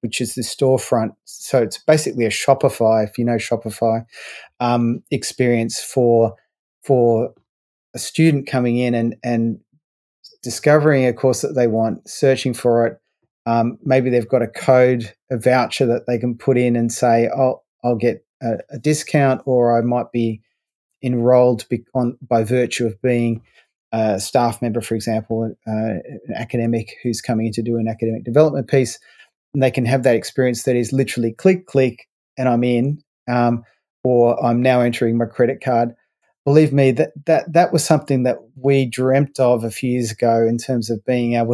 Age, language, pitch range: 30-49, English, 115-130 Hz